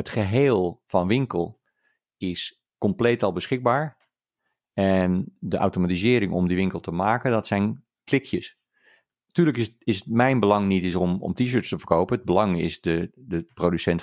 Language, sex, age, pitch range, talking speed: Dutch, male, 40-59, 90-115 Hz, 160 wpm